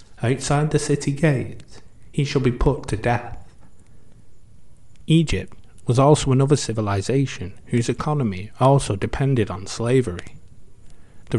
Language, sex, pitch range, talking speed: English, male, 105-135 Hz, 115 wpm